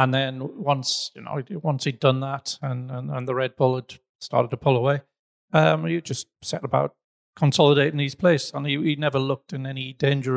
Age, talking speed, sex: 40-59, 210 wpm, male